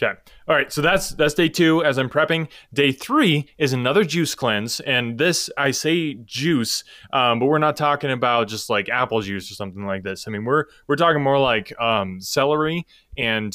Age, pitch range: 20-39, 115-150 Hz